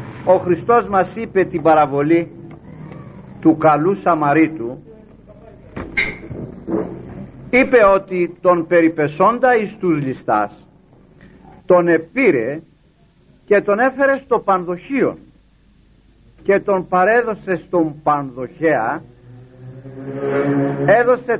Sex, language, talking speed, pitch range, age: male, Greek, 80 wpm, 155-215 Hz, 60-79